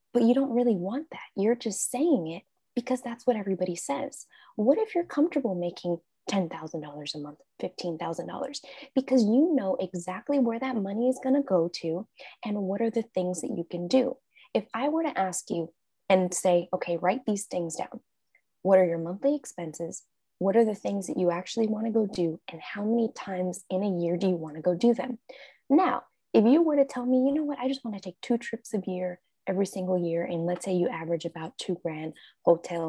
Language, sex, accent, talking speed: English, female, American, 225 wpm